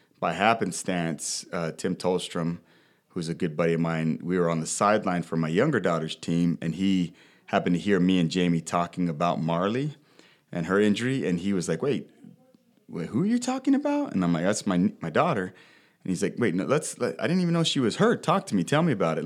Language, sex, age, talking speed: English, male, 30-49, 225 wpm